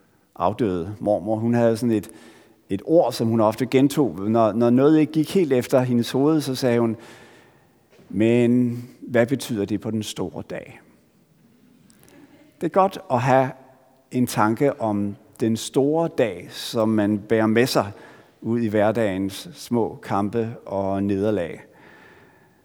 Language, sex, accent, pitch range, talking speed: Danish, male, native, 115-150 Hz, 145 wpm